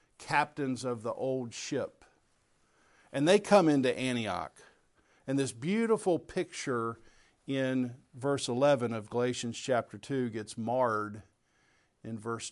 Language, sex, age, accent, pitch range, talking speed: English, male, 50-69, American, 110-135 Hz, 120 wpm